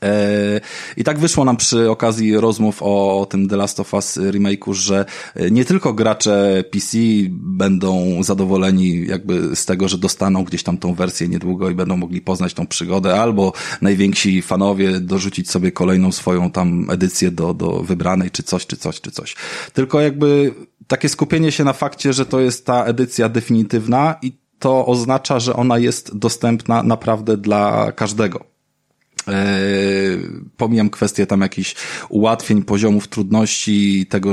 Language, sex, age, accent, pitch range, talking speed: Polish, male, 20-39, native, 95-115 Hz, 150 wpm